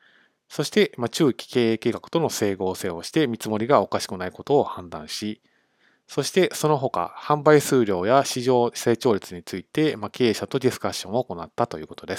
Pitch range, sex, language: 105-145 Hz, male, Japanese